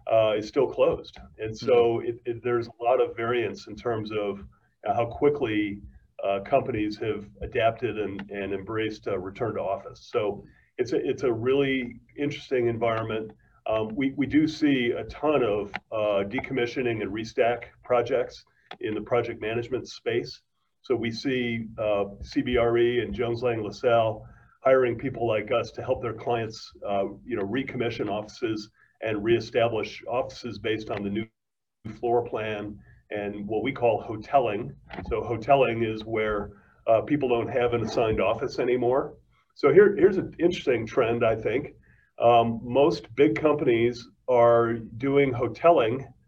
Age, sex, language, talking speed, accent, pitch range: 40-59, male, English, 150 wpm, American, 110-130 Hz